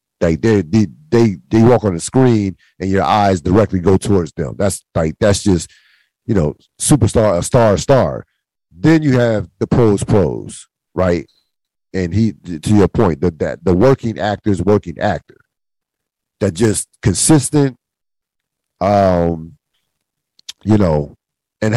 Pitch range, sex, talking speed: 85-110 Hz, male, 140 wpm